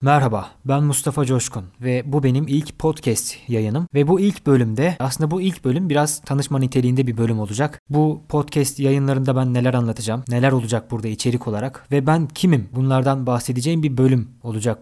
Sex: male